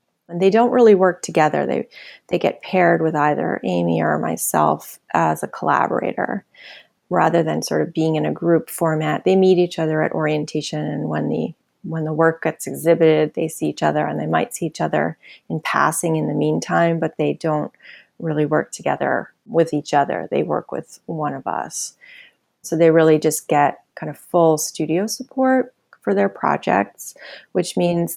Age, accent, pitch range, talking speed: 30-49, American, 155-175 Hz, 185 wpm